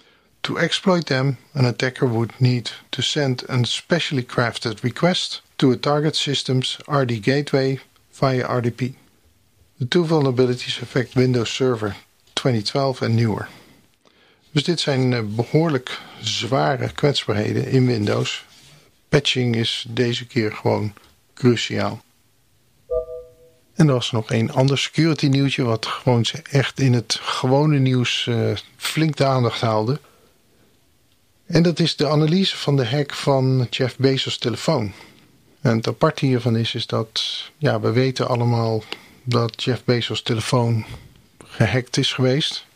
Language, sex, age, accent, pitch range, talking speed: Dutch, male, 50-69, Dutch, 115-135 Hz, 130 wpm